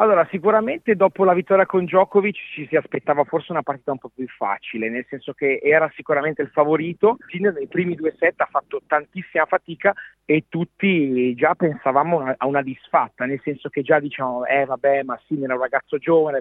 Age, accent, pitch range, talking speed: 40-59, native, 140-185 Hz, 195 wpm